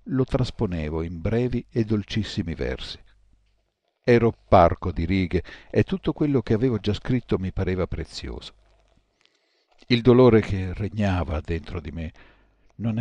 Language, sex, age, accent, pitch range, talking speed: Italian, male, 50-69, native, 85-110 Hz, 135 wpm